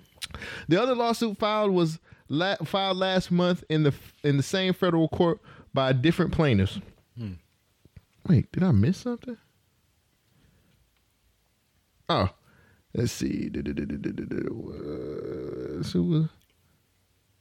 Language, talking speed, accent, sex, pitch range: English, 100 wpm, American, male, 115-165 Hz